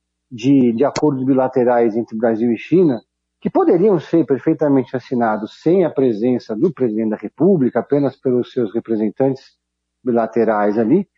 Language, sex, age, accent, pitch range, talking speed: Portuguese, male, 50-69, Brazilian, 120-150 Hz, 140 wpm